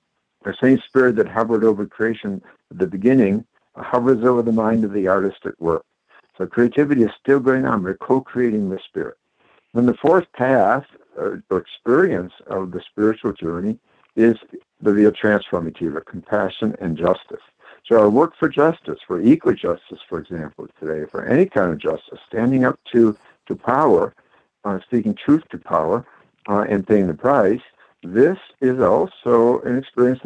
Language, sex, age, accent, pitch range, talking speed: English, male, 60-79, American, 95-125 Hz, 170 wpm